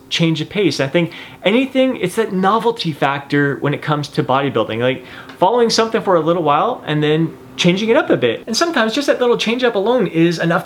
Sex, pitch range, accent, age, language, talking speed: male, 135-175 Hz, American, 30-49, English, 220 wpm